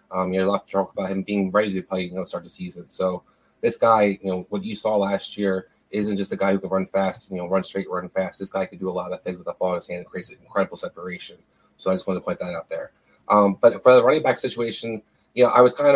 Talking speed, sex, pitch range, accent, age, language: 310 wpm, male, 100-120 Hz, American, 20-39, English